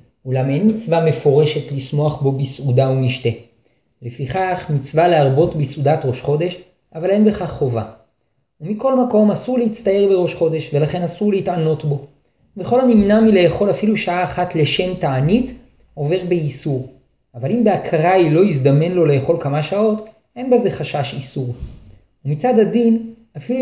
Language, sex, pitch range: Hebrew, male, 140-195 Hz